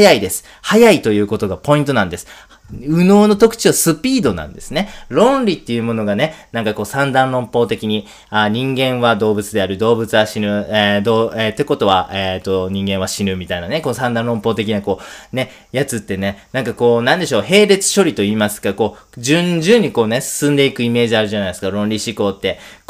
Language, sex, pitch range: Japanese, male, 105-160 Hz